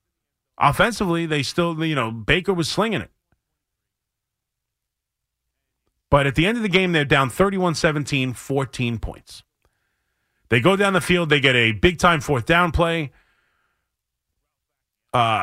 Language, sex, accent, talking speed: English, male, American, 130 wpm